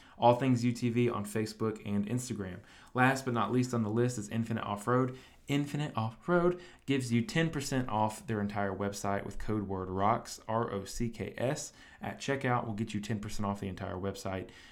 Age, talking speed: 20-39, 165 wpm